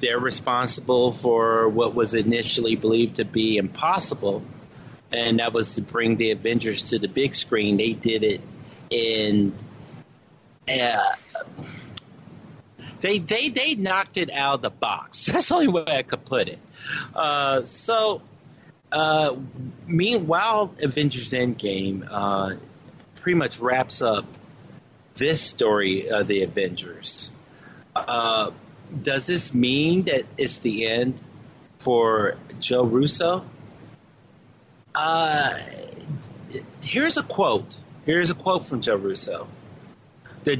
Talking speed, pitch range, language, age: 120 wpm, 115-160 Hz, English, 40-59